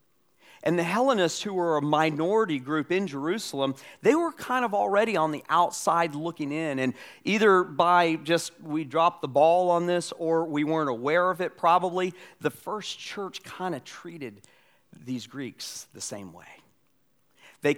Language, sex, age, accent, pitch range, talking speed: English, male, 40-59, American, 130-175 Hz, 165 wpm